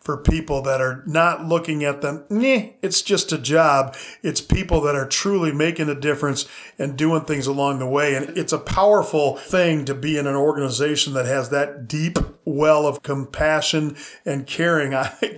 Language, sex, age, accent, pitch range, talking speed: English, male, 40-59, American, 145-175 Hz, 185 wpm